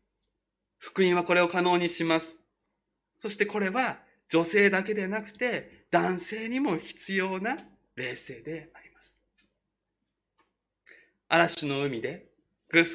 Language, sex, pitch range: Japanese, male, 145-205 Hz